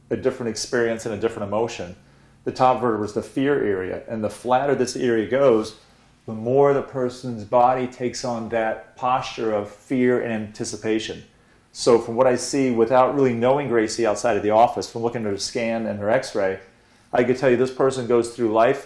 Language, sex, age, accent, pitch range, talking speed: English, male, 40-59, American, 110-125 Hz, 200 wpm